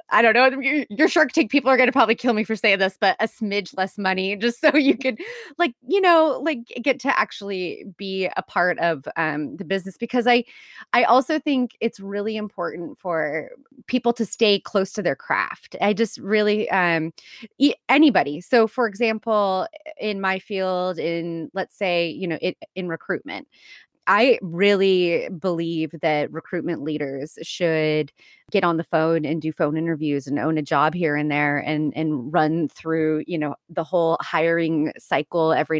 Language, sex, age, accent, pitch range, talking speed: English, female, 20-39, American, 165-235 Hz, 180 wpm